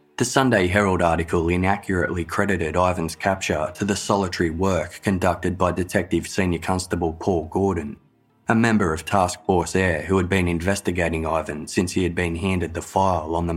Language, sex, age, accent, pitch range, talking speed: English, male, 20-39, Australian, 85-95 Hz, 175 wpm